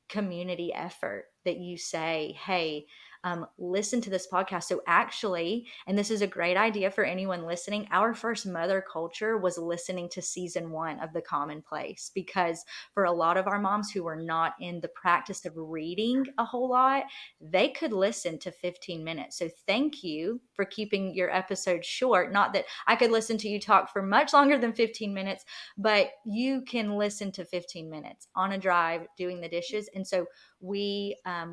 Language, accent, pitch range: English, American, 175-225 Hz